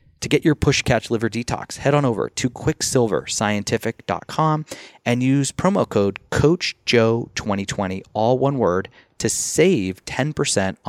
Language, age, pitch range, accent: English, 30-49, 100-130 Hz, American